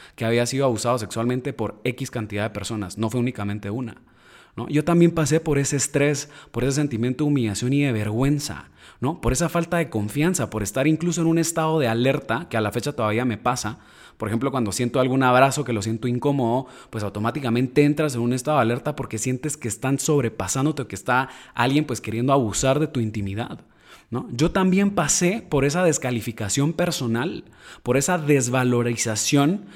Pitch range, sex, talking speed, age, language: 115-150 Hz, male, 190 wpm, 20-39, Spanish